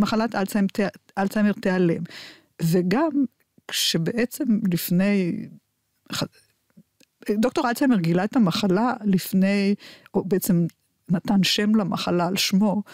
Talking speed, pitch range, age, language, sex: 90 wpm, 185-225 Hz, 50-69, Hebrew, female